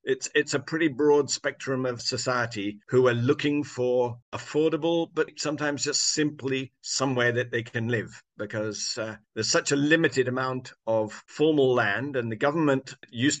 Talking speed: 160 wpm